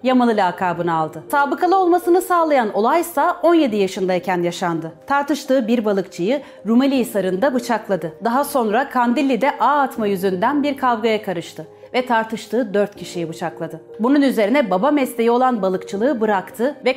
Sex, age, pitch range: female, 30-49, 190-285 Hz